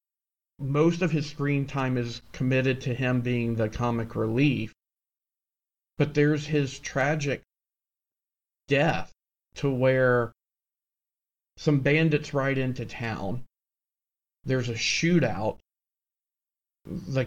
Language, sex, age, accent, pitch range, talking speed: English, male, 40-59, American, 125-150 Hz, 100 wpm